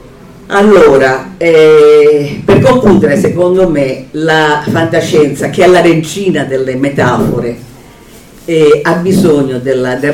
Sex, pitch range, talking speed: female, 145-190 Hz, 110 wpm